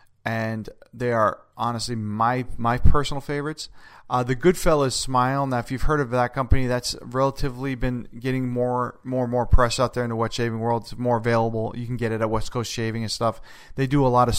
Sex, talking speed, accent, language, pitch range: male, 220 wpm, American, English, 110-130 Hz